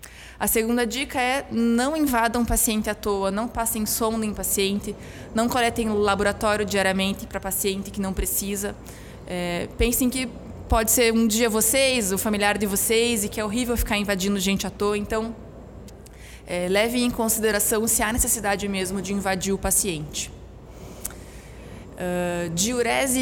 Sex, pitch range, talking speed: female, 195-230 Hz, 150 wpm